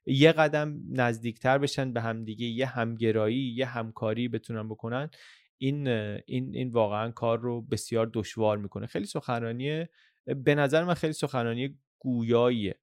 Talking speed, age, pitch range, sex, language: 135 wpm, 20-39, 115-150 Hz, male, Persian